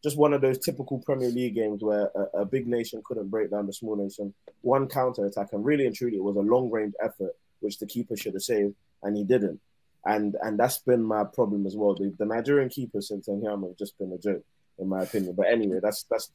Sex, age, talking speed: male, 20-39, 240 wpm